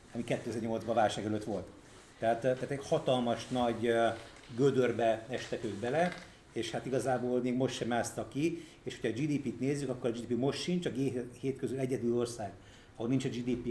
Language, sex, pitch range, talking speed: Hungarian, male, 115-135 Hz, 185 wpm